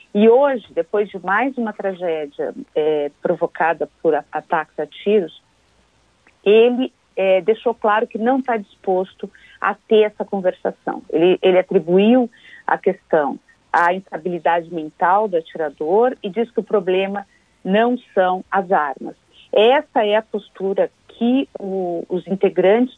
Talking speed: 135 wpm